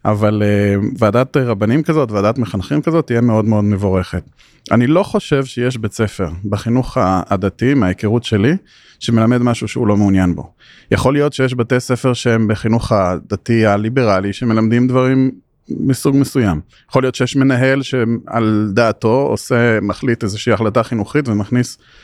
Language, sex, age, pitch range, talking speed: Hebrew, male, 30-49, 110-130 Hz, 140 wpm